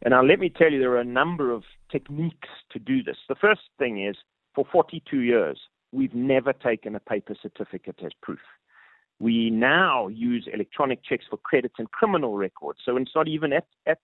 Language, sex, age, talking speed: English, male, 40-59, 195 wpm